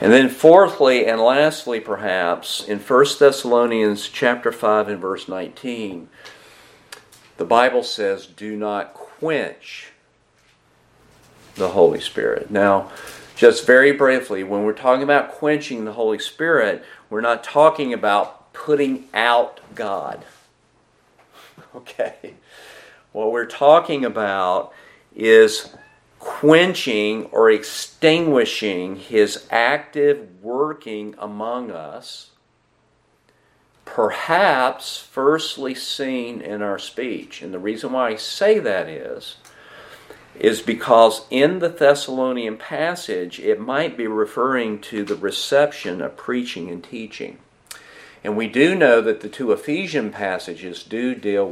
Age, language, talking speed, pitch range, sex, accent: 50-69, English, 115 wpm, 105-140 Hz, male, American